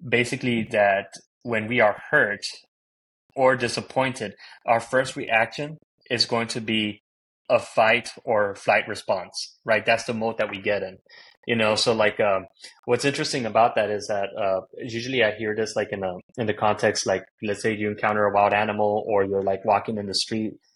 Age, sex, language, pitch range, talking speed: 20-39, male, English, 105-120 Hz, 190 wpm